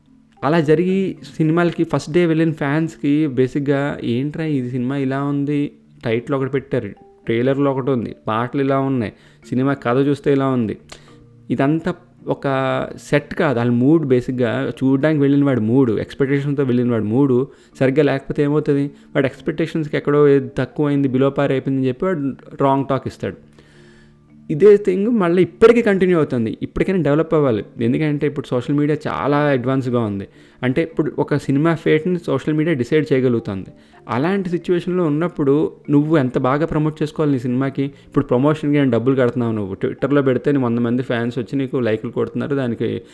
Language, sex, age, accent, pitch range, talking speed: Telugu, male, 20-39, native, 120-150 Hz, 150 wpm